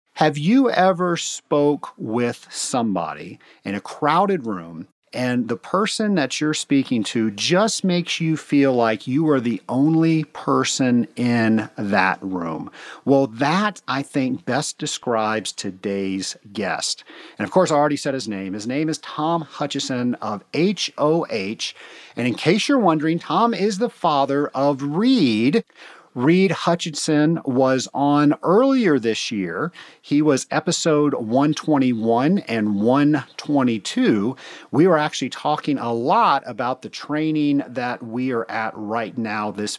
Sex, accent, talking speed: male, American, 140 wpm